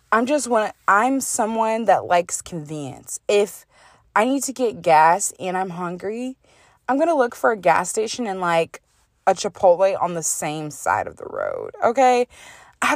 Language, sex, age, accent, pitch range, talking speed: English, female, 20-39, American, 165-250 Hz, 170 wpm